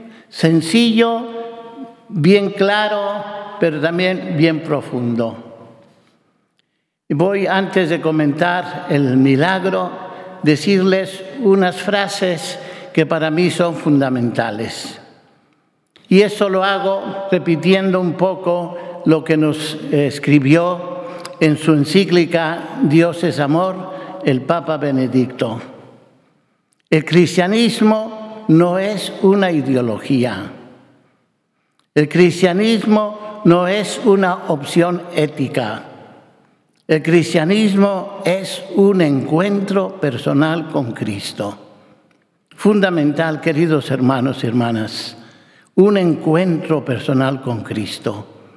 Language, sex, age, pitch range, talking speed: Spanish, male, 60-79, 155-195 Hz, 90 wpm